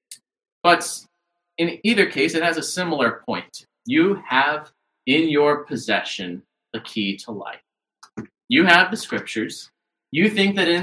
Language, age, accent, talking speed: English, 30-49, American, 145 wpm